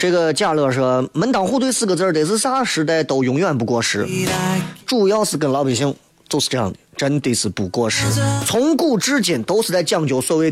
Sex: male